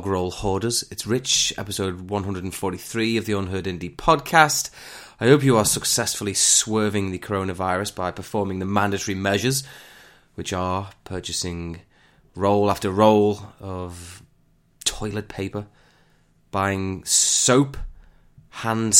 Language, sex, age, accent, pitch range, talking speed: English, male, 20-39, British, 90-120 Hz, 115 wpm